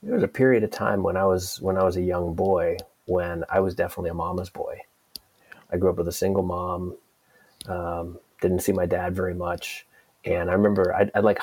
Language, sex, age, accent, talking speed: English, male, 30-49, American, 220 wpm